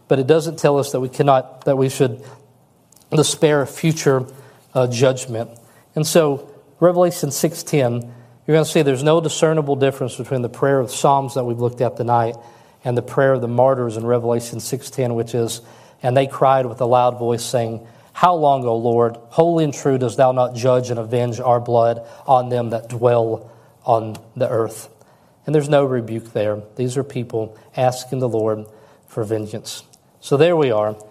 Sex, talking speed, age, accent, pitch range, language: male, 185 wpm, 40-59, American, 120-155 Hz, English